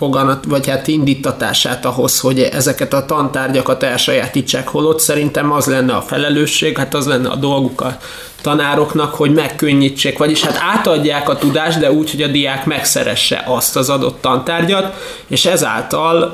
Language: Hungarian